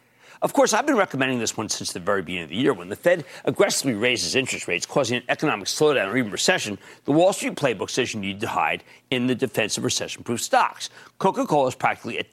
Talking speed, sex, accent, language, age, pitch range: 230 wpm, male, American, English, 50-69, 120-185 Hz